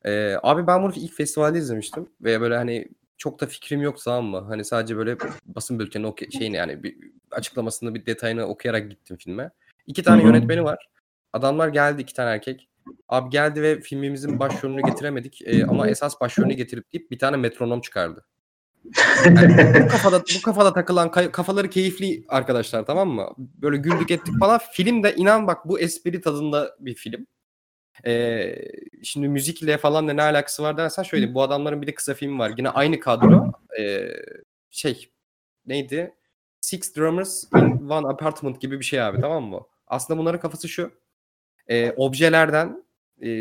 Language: Turkish